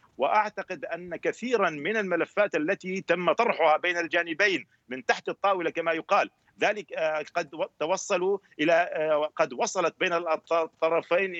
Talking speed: 120 wpm